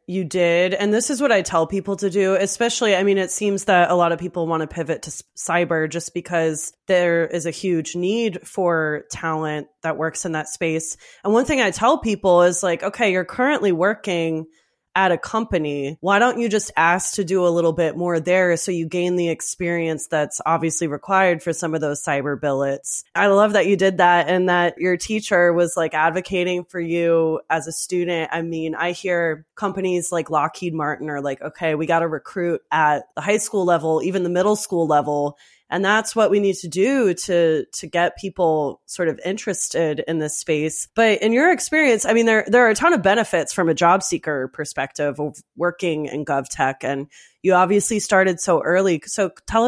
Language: English